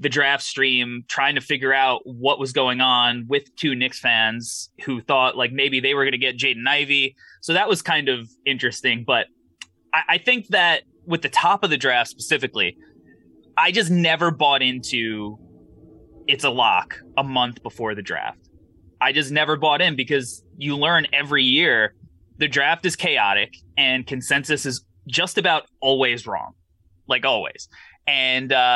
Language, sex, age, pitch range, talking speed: English, male, 20-39, 125-150 Hz, 170 wpm